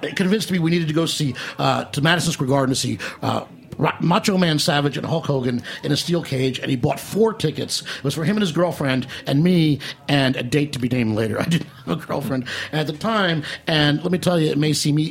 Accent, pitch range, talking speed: American, 130-165 Hz, 245 wpm